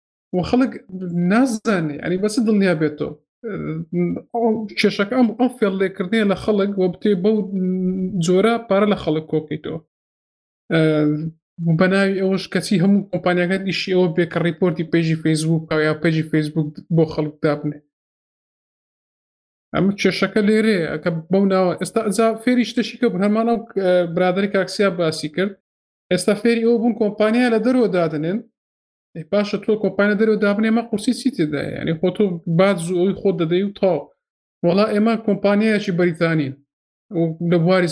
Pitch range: 165-205 Hz